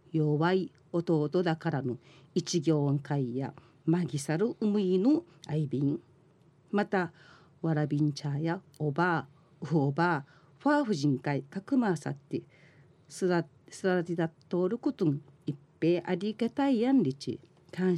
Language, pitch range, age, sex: Japanese, 150-205 Hz, 40-59, female